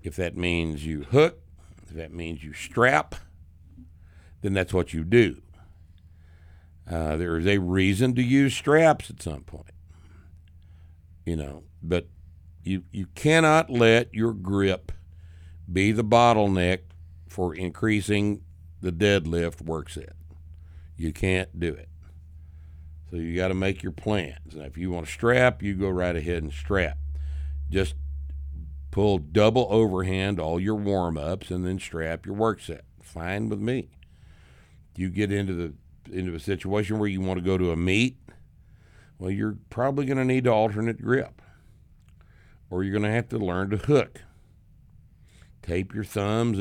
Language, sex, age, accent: English, male, 60-79, American